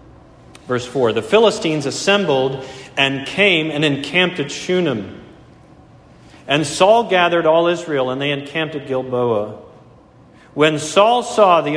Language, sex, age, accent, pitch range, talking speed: English, male, 40-59, American, 125-170 Hz, 125 wpm